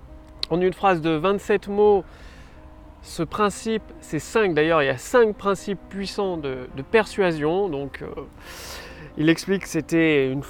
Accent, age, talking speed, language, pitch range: French, 30-49, 155 wpm, French, 150-225 Hz